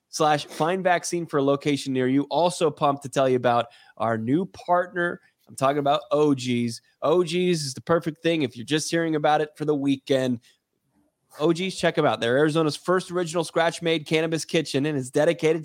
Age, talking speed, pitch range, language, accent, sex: 20-39, 190 wpm, 135-170 Hz, English, American, male